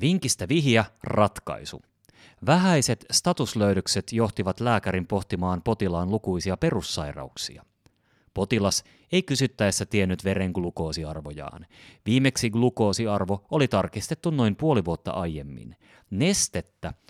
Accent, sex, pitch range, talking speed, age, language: native, male, 95-125 Hz, 90 wpm, 30-49, Finnish